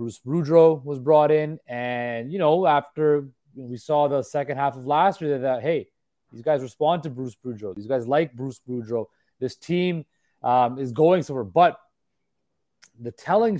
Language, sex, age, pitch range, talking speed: English, male, 20-39, 130-165 Hz, 175 wpm